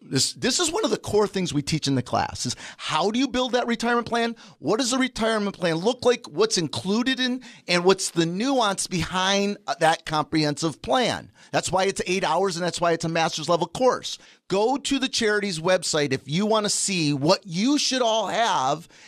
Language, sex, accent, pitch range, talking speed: English, male, American, 175-235 Hz, 210 wpm